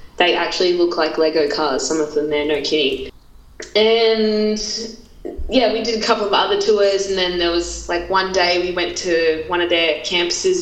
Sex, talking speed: female, 200 wpm